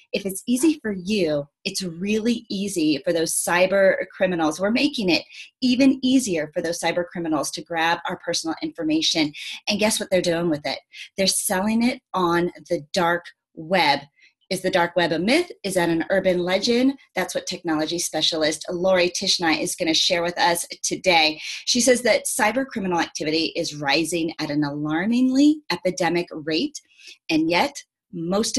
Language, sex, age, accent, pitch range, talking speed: English, female, 30-49, American, 165-225 Hz, 170 wpm